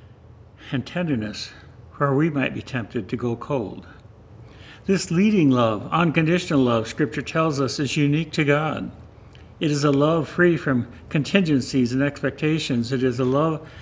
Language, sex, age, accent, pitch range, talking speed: English, male, 60-79, American, 115-145 Hz, 150 wpm